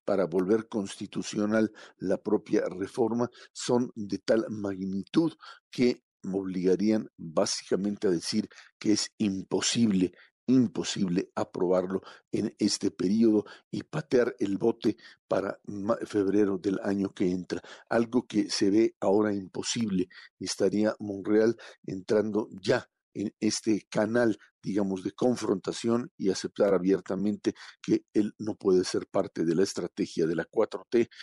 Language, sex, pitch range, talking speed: Spanish, male, 95-110 Hz, 125 wpm